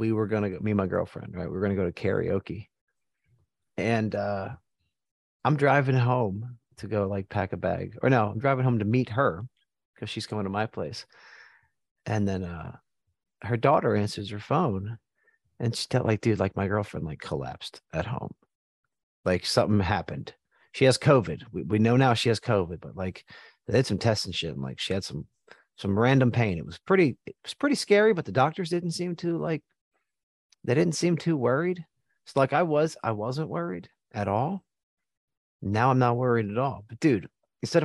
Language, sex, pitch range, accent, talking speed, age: English, male, 105-140 Hz, American, 200 wpm, 40-59